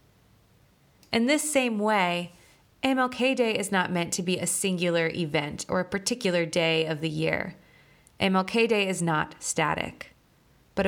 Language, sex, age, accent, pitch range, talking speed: English, female, 20-39, American, 165-215 Hz, 150 wpm